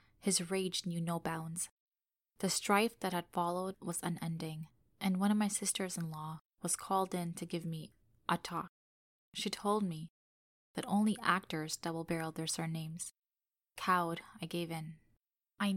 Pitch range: 170-200 Hz